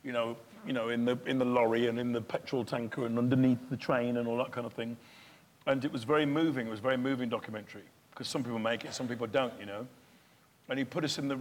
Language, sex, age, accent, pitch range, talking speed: English, male, 50-69, British, 115-130 Hz, 270 wpm